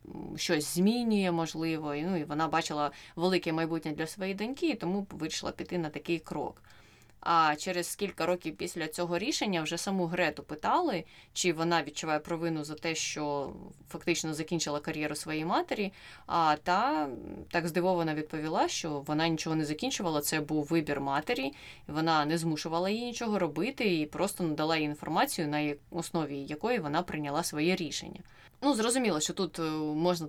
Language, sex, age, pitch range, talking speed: Ukrainian, female, 20-39, 155-180 Hz, 160 wpm